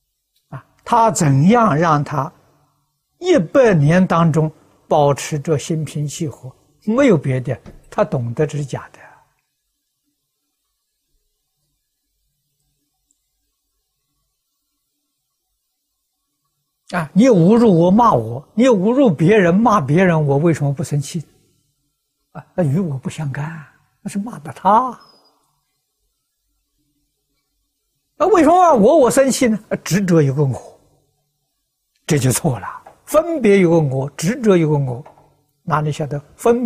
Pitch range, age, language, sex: 145-180 Hz, 60-79, Chinese, male